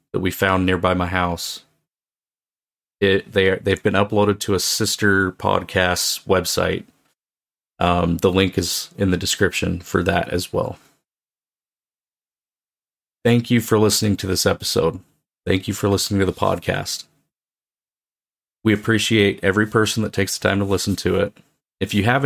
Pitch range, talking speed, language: 90-105 Hz, 155 wpm, English